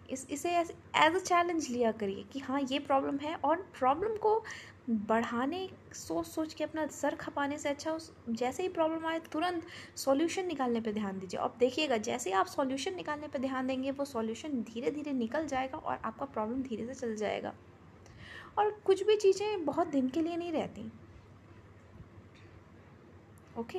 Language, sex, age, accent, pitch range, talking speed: Hindi, female, 20-39, native, 240-345 Hz, 175 wpm